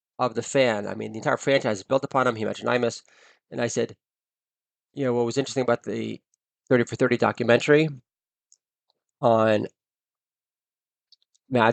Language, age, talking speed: English, 20-39, 160 wpm